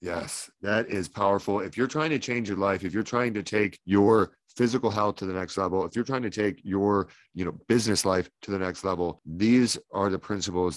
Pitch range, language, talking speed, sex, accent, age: 90-100 Hz, English, 230 wpm, male, American, 40-59